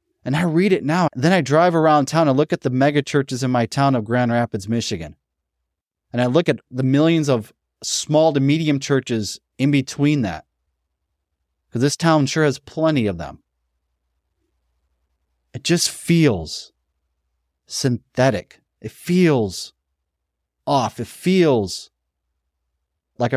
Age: 30-49